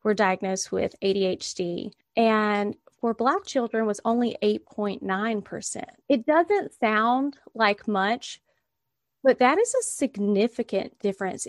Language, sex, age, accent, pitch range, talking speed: English, female, 30-49, American, 200-250 Hz, 115 wpm